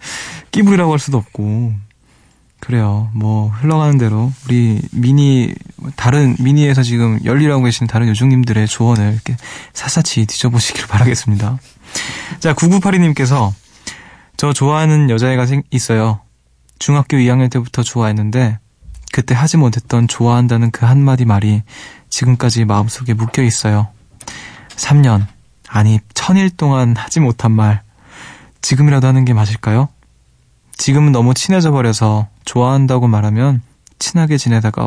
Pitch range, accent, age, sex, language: 110-135 Hz, native, 20-39, male, Korean